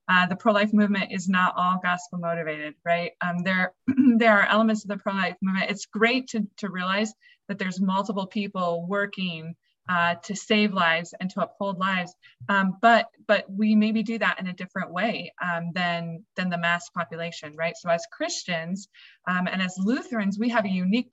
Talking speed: 185 wpm